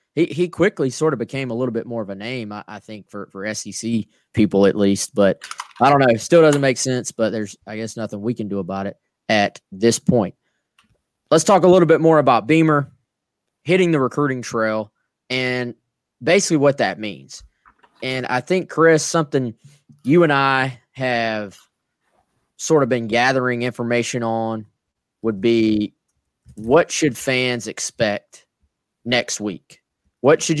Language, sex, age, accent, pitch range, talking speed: English, male, 20-39, American, 115-145 Hz, 170 wpm